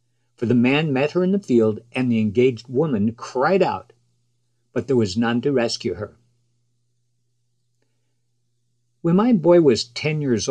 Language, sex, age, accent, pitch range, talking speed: English, male, 60-79, American, 120-130 Hz, 155 wpm